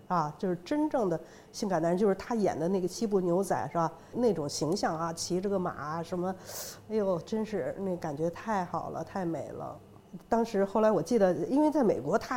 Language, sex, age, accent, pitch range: Chinese, female, 50-69, native, 170-230 Hz